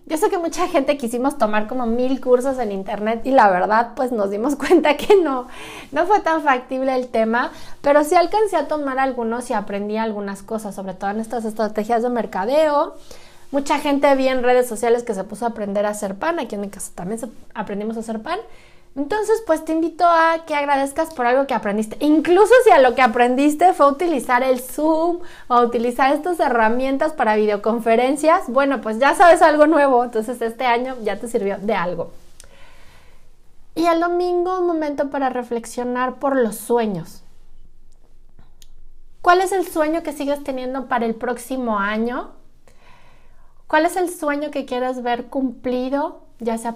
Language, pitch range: Spanish, 230-310 Hz